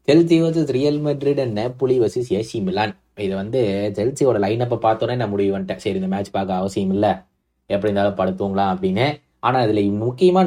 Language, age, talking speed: Tamil, 20-39, 170 wpm